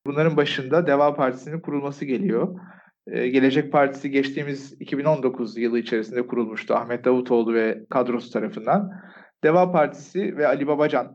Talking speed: 130 wpm